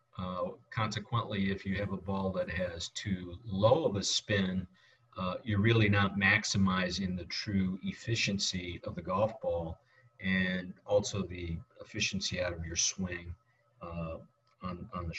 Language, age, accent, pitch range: English, 40-59, American, 95-110 Hz